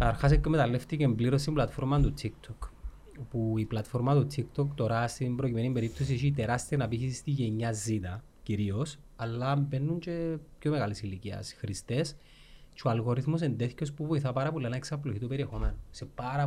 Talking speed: 140 wpm